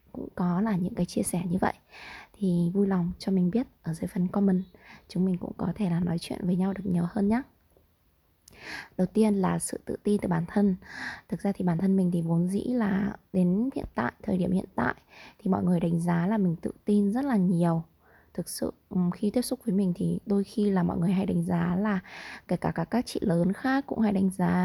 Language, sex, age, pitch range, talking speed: Vietnamese, female, 20-39, 175-210 Hz, 240 wpm